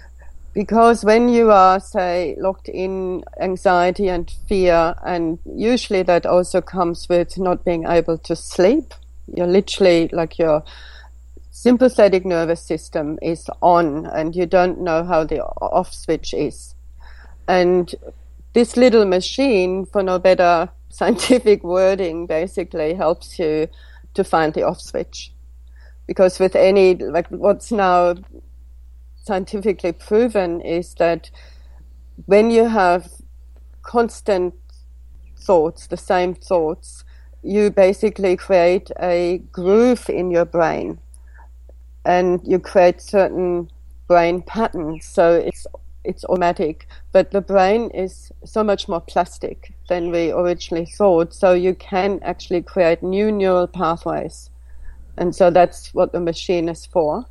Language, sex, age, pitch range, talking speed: English, female, 40-59, 145-190 Hz, 125 wpm